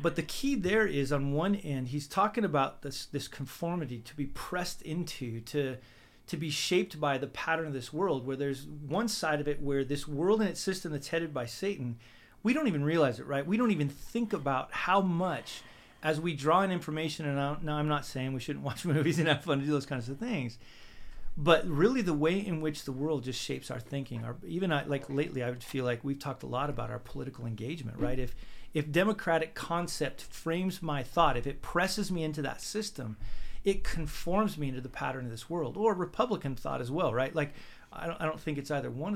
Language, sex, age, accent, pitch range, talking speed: English, male, 40-59, American, 130-170 Hz, 225 wpm